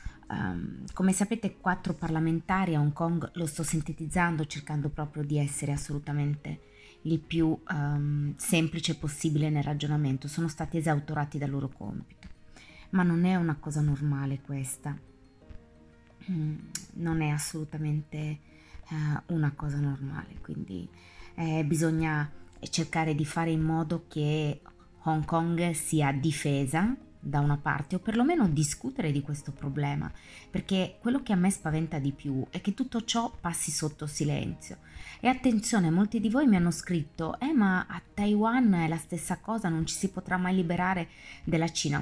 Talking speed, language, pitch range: 145 wpm, Italian, 145-180 Hz